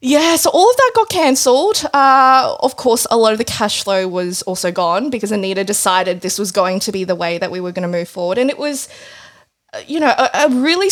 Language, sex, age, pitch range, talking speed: English, female, 20-39, 195-270 Hz, 235 wpm